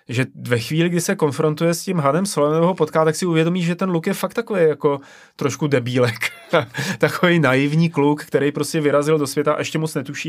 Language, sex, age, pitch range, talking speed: Czech, male, 30-49, 120-150 Hz, 210 wpm